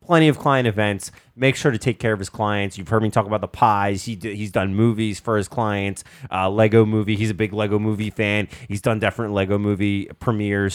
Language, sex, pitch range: English, male, 100-135 Hz